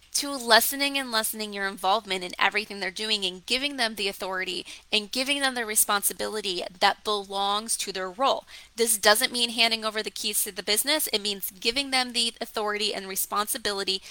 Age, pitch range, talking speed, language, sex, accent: 20-39, 200-250 Hz, 185 wpm, English, female, American